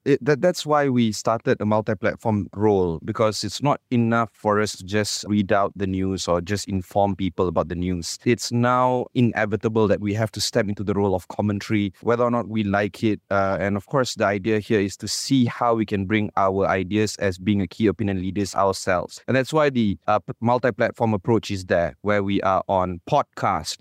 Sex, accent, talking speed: male, Malaysian, 215 wpm